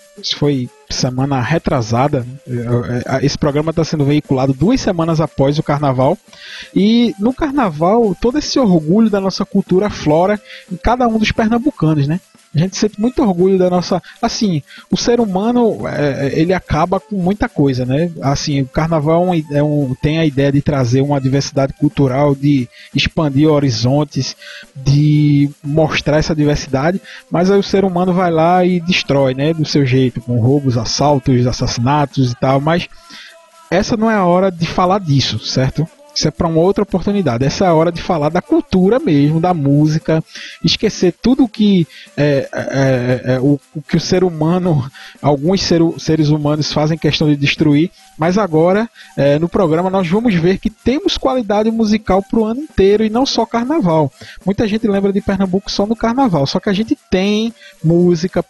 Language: Portuguese